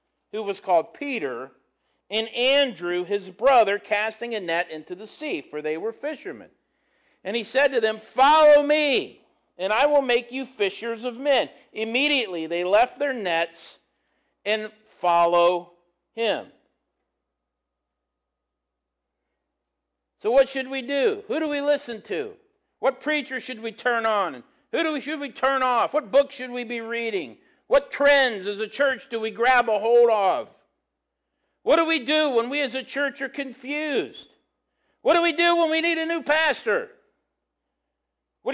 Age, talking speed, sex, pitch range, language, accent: 50-69, 160 wpm, male, 180-295 Hz, English, American